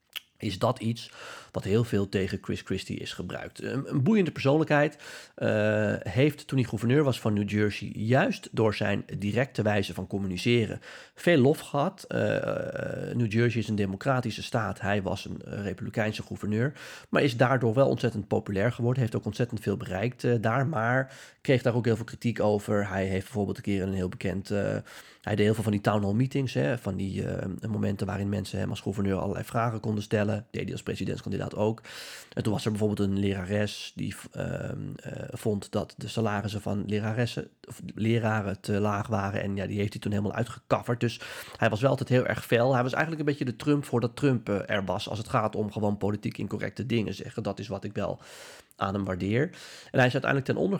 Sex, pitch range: male, 100-125 Hz